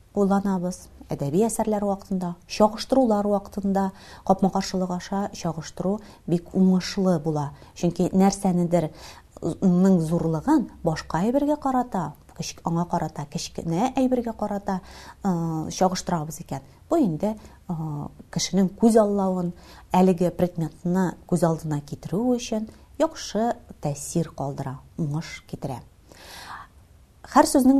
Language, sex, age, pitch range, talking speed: Russian, female, 30-49, 160-205 Hz, 80 wpm